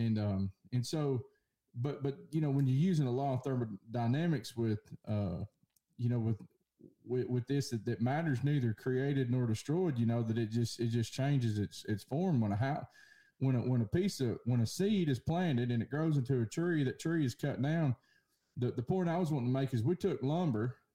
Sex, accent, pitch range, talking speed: male, American, 115-145 Hz, 225 wpm